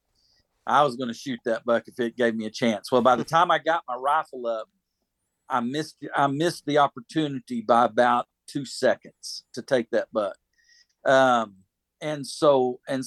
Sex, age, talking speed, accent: male, 50-69, 185 wpm, American